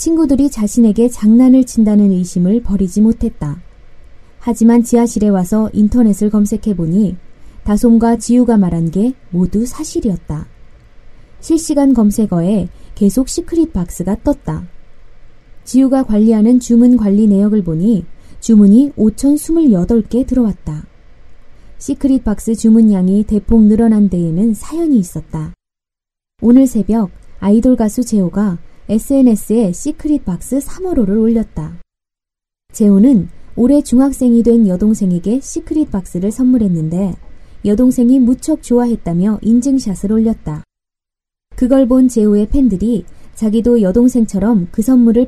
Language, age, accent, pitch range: Korean, 20-39, native, 195-250 Hz